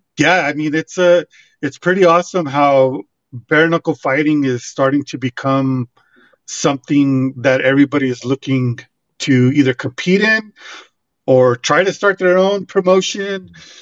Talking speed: 140 wpm